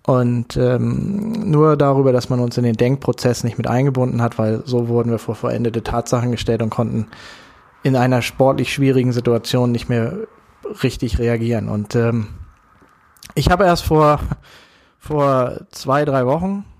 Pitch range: 120-150 Hz